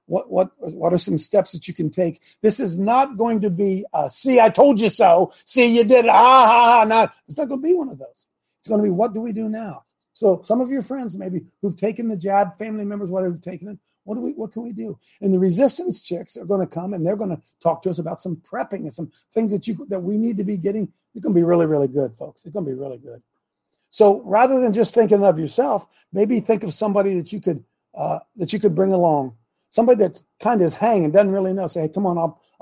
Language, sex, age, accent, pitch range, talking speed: English, male, 50-69, American, 170-220 Hz, 270 wpm